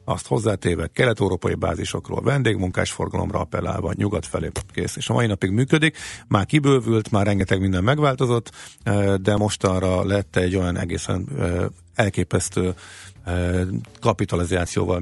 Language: Hungarian